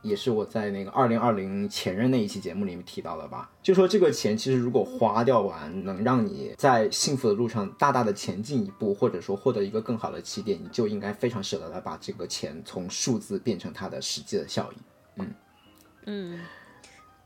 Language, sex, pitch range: Chinese, male, 110-185 Hz